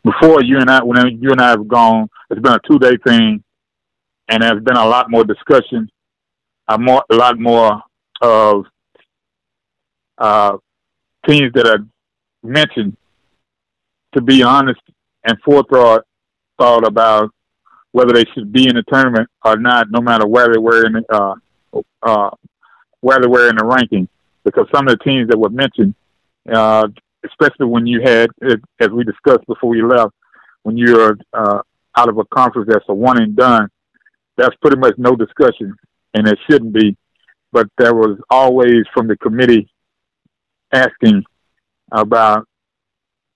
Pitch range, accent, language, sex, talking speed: 110-125 Hz, American, English, male, 155 wpm